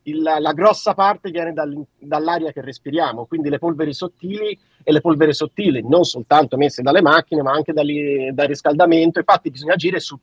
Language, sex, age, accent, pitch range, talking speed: Italian, male, 40-59, native, 155-195 Hz, 180 wpm